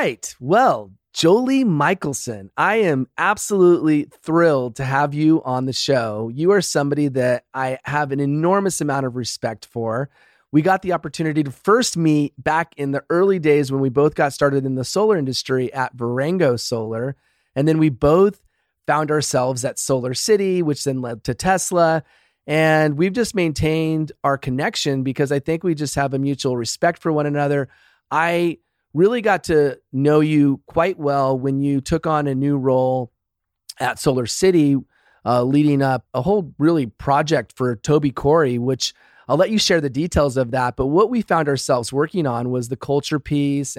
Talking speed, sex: 180 wpm, male